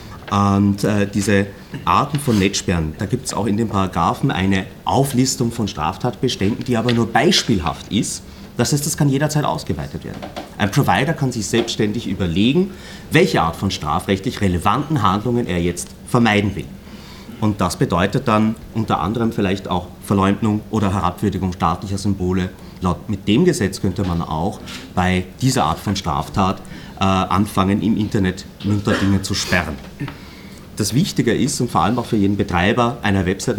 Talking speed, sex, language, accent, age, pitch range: 160 wpm, male, German, German, 30-49, 95-115 Hz